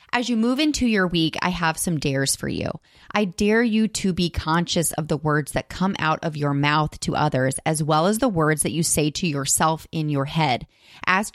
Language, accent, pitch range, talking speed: English, American, 155-210 Hz, 225 wpm